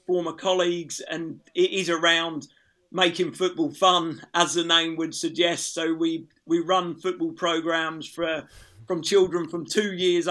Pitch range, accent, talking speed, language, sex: 170-185 Hz, British, 150 wpm, Dutch, male